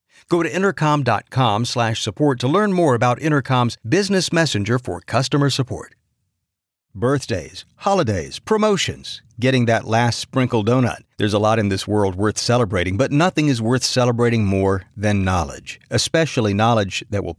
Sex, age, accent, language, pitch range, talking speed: male, 50-69, American, English, 105-140 Hz, 145 wpm